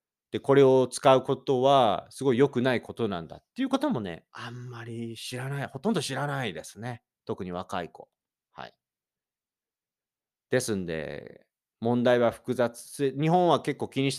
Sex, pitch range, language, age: male, 105-140 Hz, Japanese, 40-59